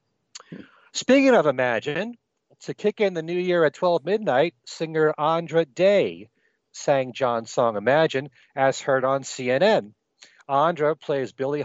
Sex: male